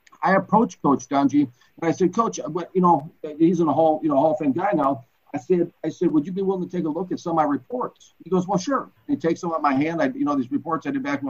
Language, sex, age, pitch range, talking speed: English, male, 50-69, 145-195 Hz, 320 wpm